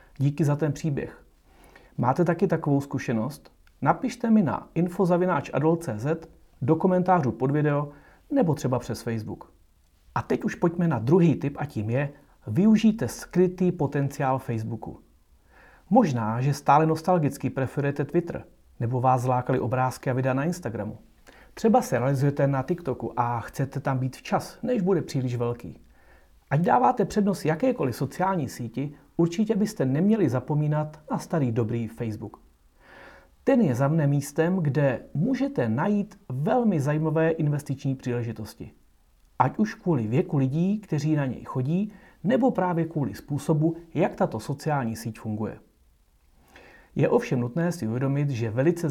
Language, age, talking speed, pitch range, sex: Czech, 40-59, 140 wpm, 125-170 Hz, male